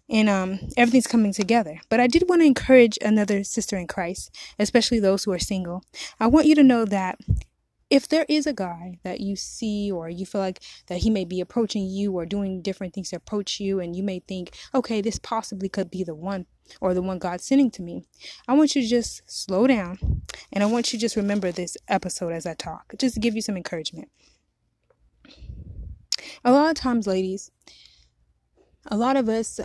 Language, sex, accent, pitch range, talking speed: English, female, American, 185-230 Hz, 210 wpm